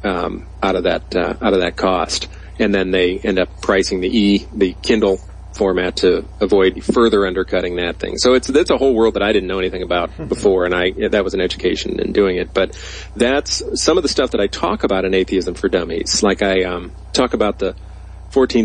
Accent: American